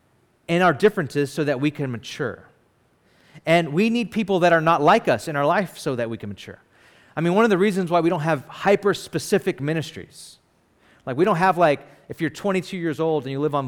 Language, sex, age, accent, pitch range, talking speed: English, male, 30-49, American, 145-200 Hz, 225 wpm